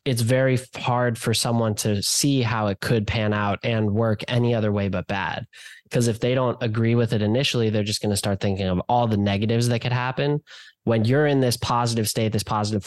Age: 10-29